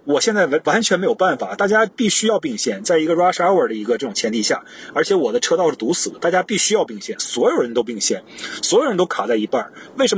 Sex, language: male, Chinese